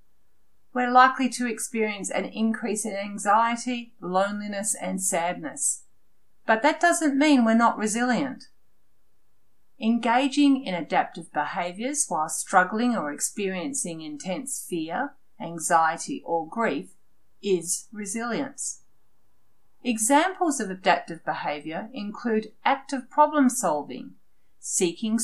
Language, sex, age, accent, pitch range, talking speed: English, female, 40-59, Australian, 170-250 Hz, 100 wpm